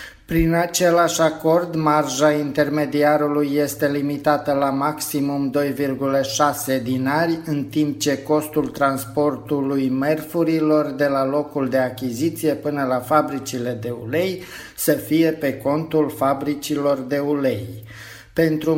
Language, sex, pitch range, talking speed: Romanian, male, 130-150 Hz, 110 wpm